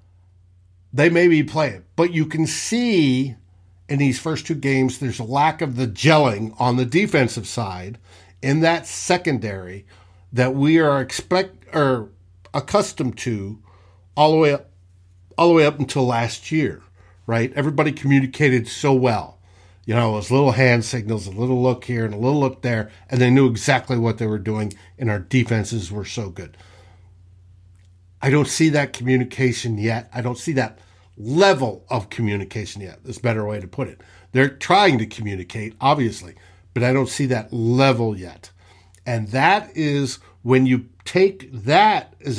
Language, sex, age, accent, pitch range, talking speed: English, male, 60-79, American, 95-135 Hz, 170 wpm